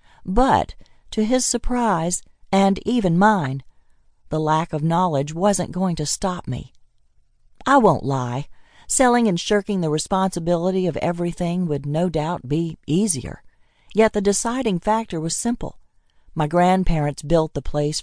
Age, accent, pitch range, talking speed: 50-69, American, 150-200 Hz, 140 wpm